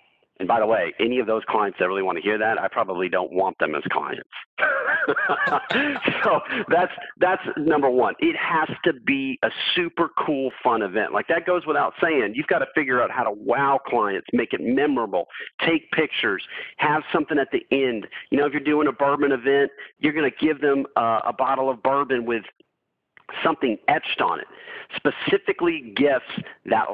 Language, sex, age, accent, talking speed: English, male, 40-59, American, 190 wpm